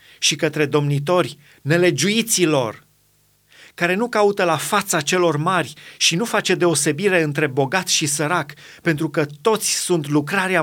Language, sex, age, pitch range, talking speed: Romanian, male, 40-59, 140-180 Hz, 135 wpm